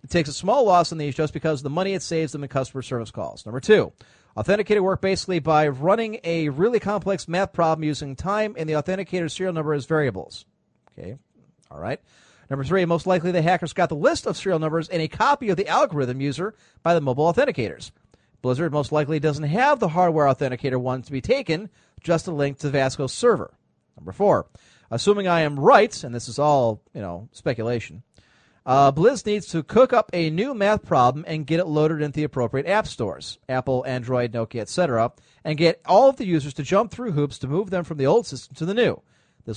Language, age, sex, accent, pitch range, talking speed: English, 40-59, male, American, 140-185 Hz, 215 wpm